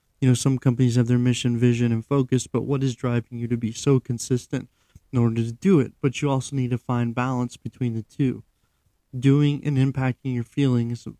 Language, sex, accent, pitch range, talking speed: English, male, American, 120-140 Hz, 210 wpm